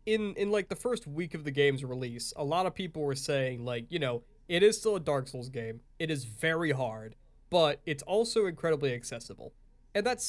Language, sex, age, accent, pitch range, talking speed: English, male, 20-39, American, 130-165 Hz, 215 wpm